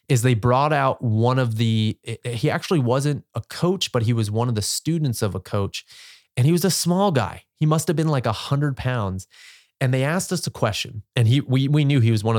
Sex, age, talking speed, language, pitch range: male, 30-49, 235 wpm, English, 105-135 Hz